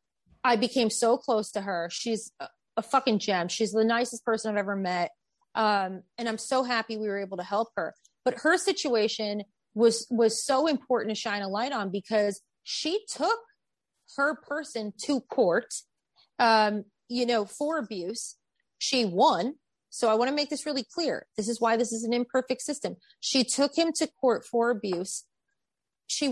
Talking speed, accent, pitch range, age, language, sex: 180 wpm, American, 220-275 Hz, 30-49, English, female